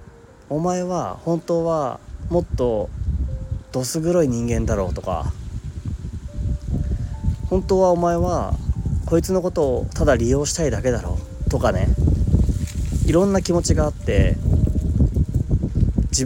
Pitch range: 90-130 Hz